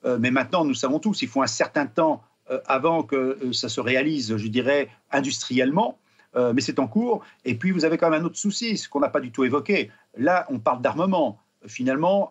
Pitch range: 135-195 Hz